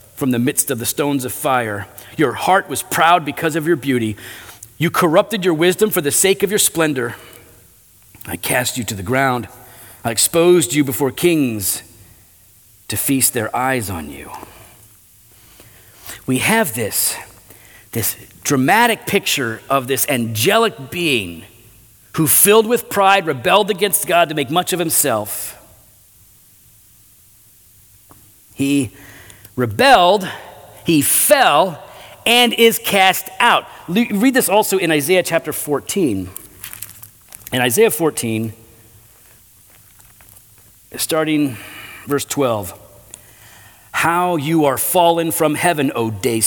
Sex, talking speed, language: male, 120 wpm, English